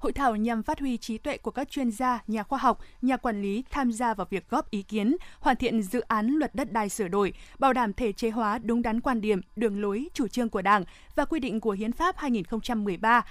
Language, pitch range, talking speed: Vietnamese, 220-270 Hz, 250 wpm